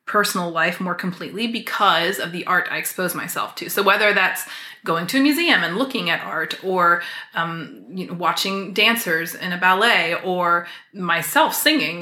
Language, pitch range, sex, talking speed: English, 175-210 Hz, female, 175 wpm